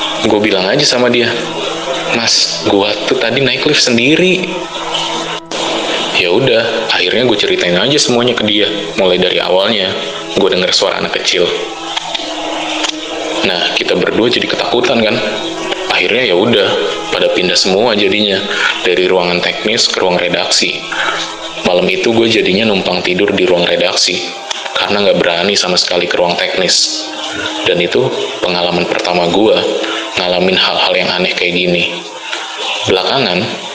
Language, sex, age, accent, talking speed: Indonesian, male, 20-39, native, 135 wpm